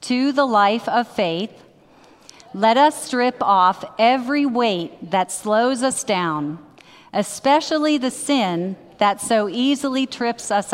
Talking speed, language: 130 wpm, English